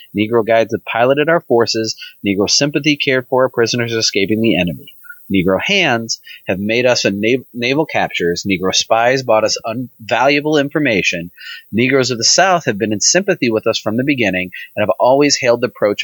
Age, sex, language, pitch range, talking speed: 30-49, male, English, 100-135 Hz, 180 wpm